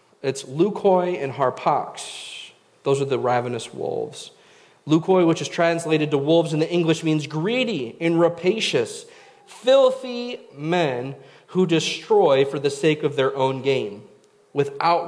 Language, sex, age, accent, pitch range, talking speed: English, male, 40-59, American, 140-185 Hz, 135 wpm